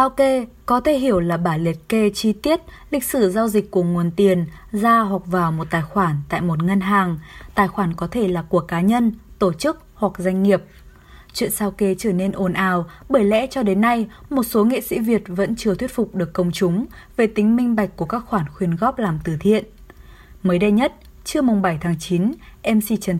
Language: Vietnamese